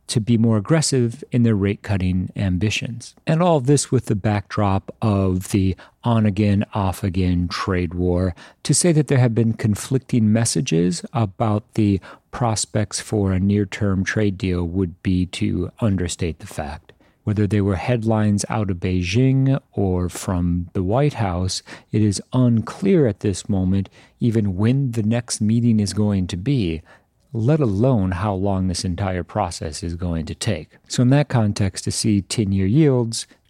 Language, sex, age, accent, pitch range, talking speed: English, male, 40-59, American, 95-120 Hz, 160 wpm